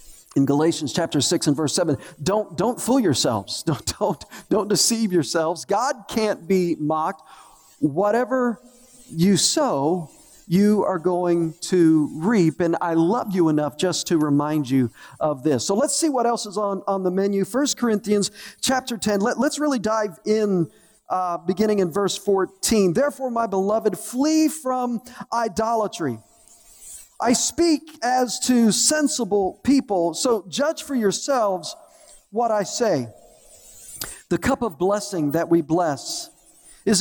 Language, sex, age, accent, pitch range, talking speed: English, male, 40-59, American, 175-235 Hz, 145 wpm